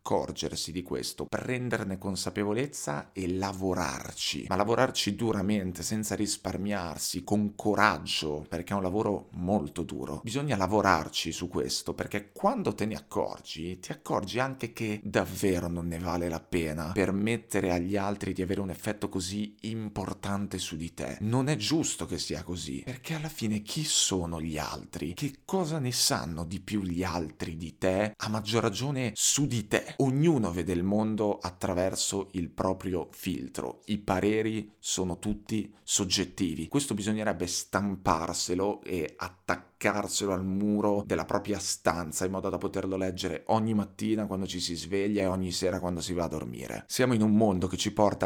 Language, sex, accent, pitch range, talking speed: Italian, male, native, 90-110 Hz, 160 wpm